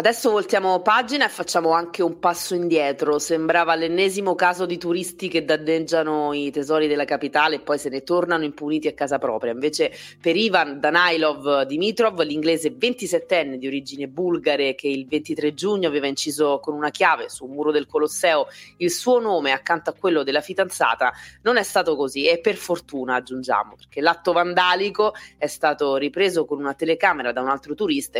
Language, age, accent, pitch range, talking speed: Italian, 20-39, native, 145-180 Hz, 170 wpm